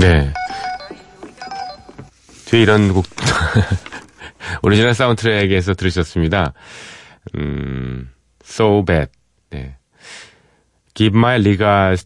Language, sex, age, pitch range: Korean, male, 40-59, 85-120 Hz